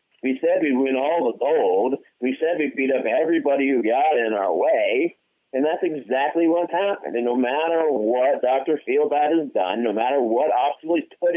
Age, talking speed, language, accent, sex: 50-69, 195 wpm, English, American, male